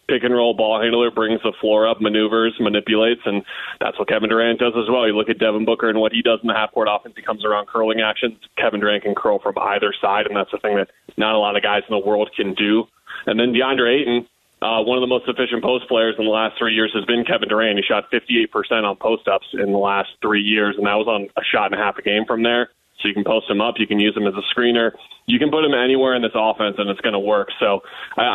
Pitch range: 105-120 Hz